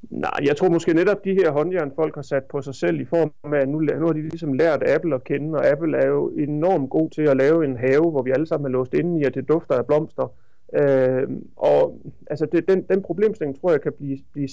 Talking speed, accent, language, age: 260 wpm, native, Danish, 30-49